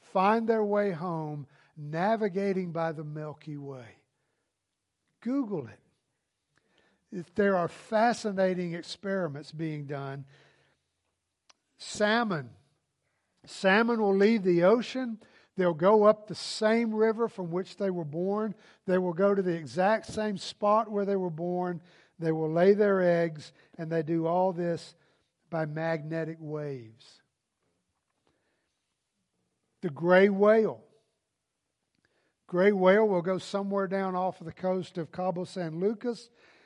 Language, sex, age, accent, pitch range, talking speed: English, male, 50-69, American, 160-205 Hz, 125 wpm